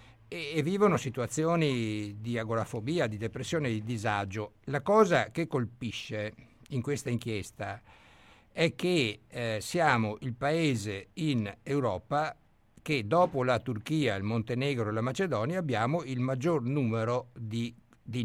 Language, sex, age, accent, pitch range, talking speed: Italian, male, 60-79, native, 110-140 Hz, 130 wpm